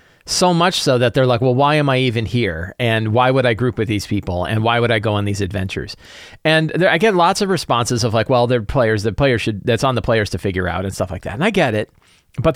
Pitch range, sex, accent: 115-155 Hz, male, American